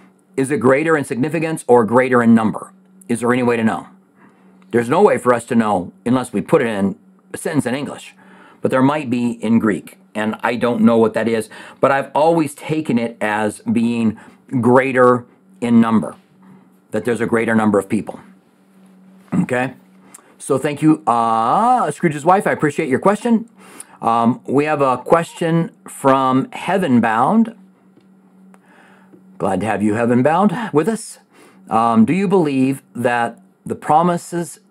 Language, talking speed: English, 165 wpm